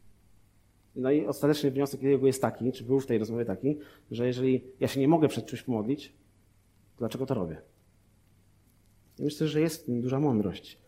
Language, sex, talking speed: Polish, male, 175 wpm